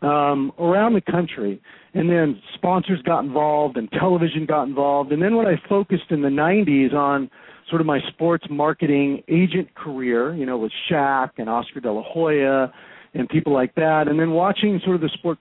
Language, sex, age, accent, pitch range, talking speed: English, male, 40-59, American, 140-180 Hz, 190 wpm